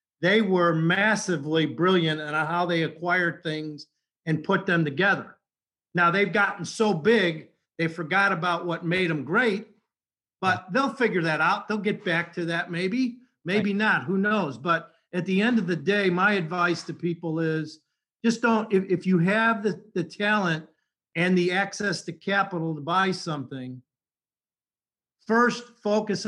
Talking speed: 160 wpm